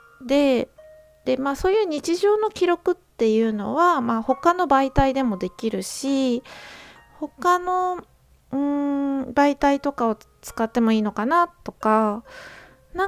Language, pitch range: Japanese, 220-305 Hz